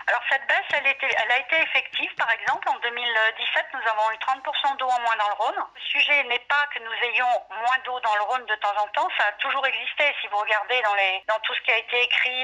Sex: female